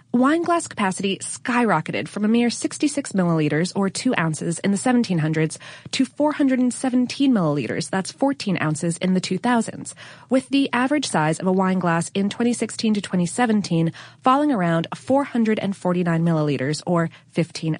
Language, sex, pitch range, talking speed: English, female, 170-240 Hz, 140 wpm